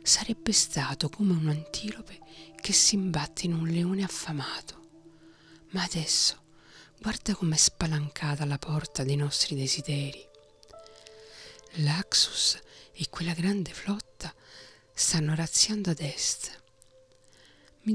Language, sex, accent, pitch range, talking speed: Italian, female, native, 145-175 Hz, 105 wpm